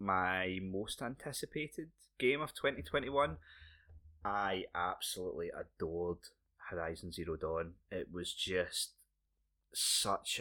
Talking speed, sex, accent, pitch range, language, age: 90 wpm, male, British, 80-100 Hz, English, 20-39